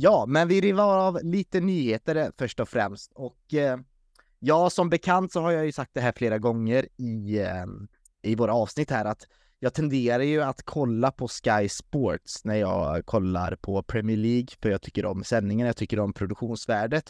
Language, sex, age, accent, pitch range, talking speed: Swedish, male, 20-39, native, 110-140 Hz, 190 wpm